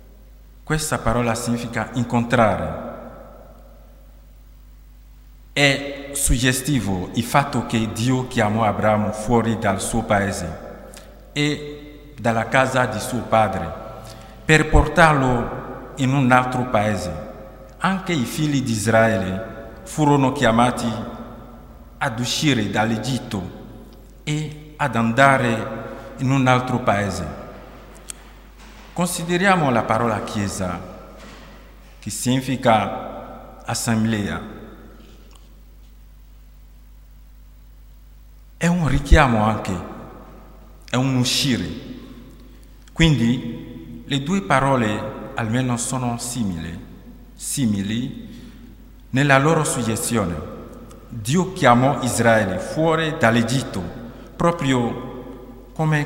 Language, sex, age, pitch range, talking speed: Italian, male, 50-69, 110-130 Hz, 80 wpm